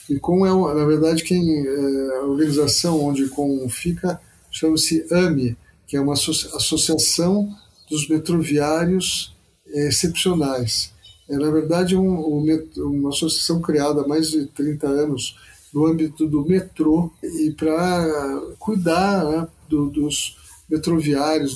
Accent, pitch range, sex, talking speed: Brazilian, 140-170 Hz, male, 125 wpm